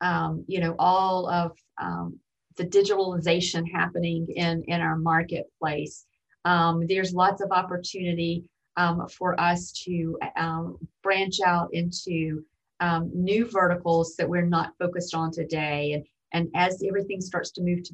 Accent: American